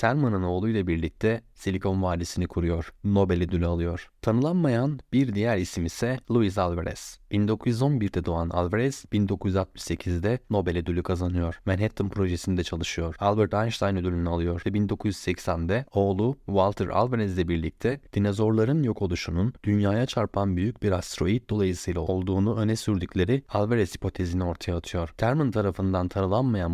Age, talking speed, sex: 30-49, 125 wpm, male